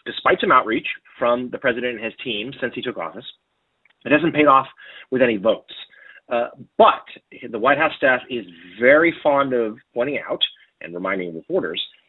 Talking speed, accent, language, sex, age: 175 wpm, American, English, male, 30-49